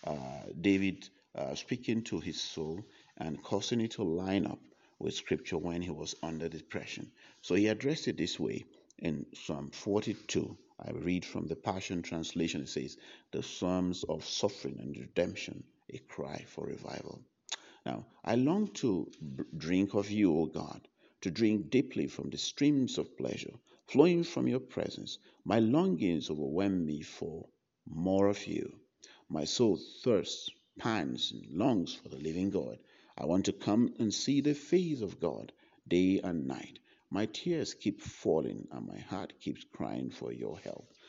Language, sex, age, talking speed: English, male, 50-69, 160 wpm